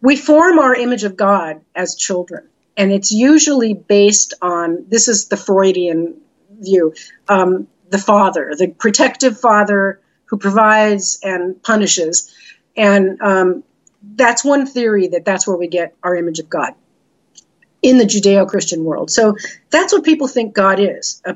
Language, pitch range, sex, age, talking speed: English, 185-225 Hz, female, 50-69, 145 wpm